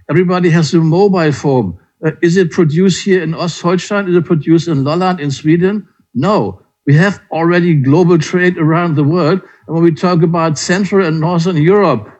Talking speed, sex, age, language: 180 wpm, male, 60-79, Danish